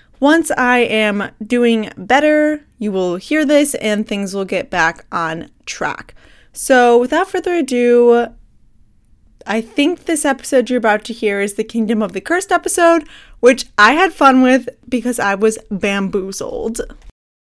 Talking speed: 150 wpm